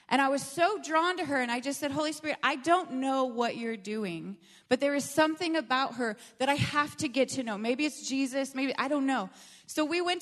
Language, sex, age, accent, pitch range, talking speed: English, female, 30-49, American, 225-280 Hz, 245 wpm